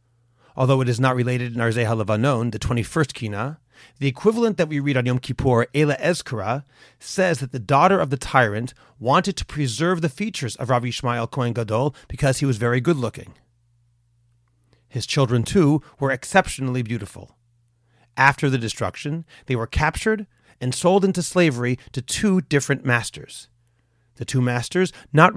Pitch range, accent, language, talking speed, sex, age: 120-145 Hz, American, English, 160 wpm, male, 40-59